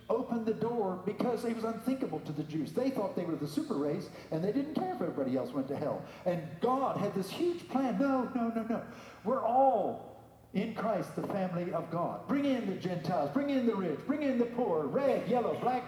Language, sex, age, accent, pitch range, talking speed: English, male, 50-69, American, 175-235 Hz, 225 wpm